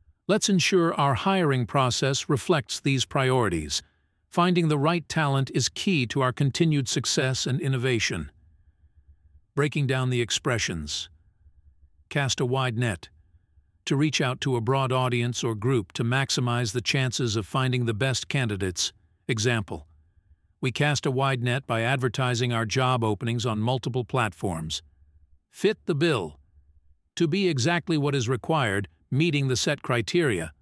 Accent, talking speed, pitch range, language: American, 145 wpm, 90-145 Hz, English